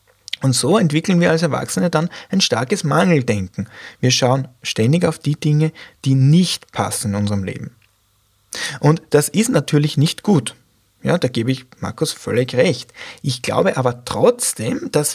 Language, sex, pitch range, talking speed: German, male, 115-165 Hz, 160 wpm